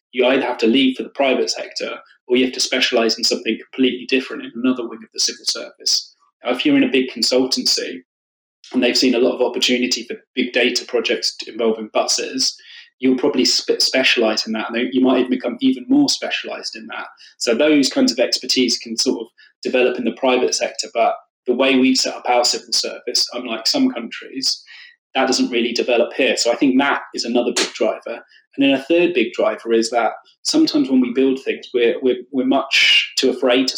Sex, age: male, 20-39